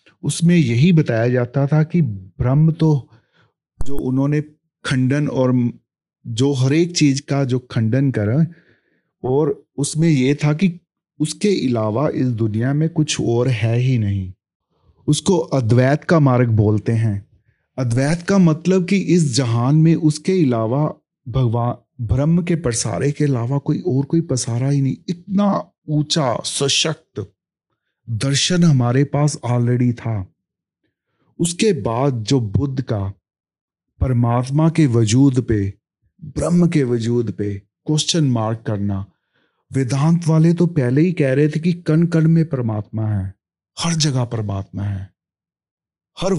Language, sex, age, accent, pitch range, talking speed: Hindi, male, 40-59, native, 115-160 Hz, 135 wpm